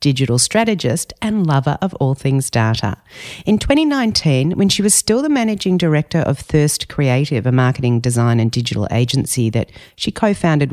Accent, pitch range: Australian, 140-195 Hz